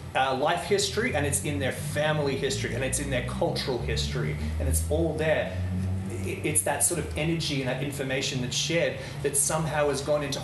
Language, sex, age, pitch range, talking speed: English, male, 30-49, 120-160 Hz, 195 wpm